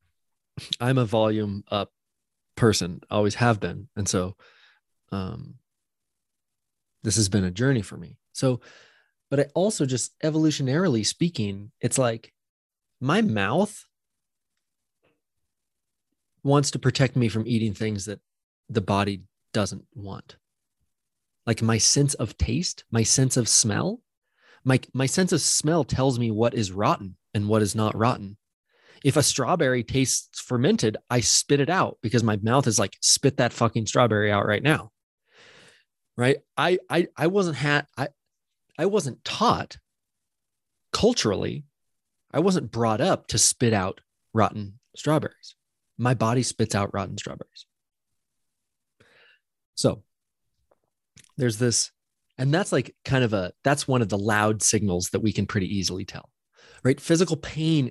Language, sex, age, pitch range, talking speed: English, male, 30-49, 105-140 Hz, 140 wpm